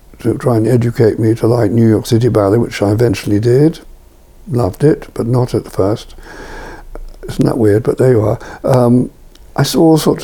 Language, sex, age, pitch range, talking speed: English, male, 60-79, 115-140 Hz, 195 wpm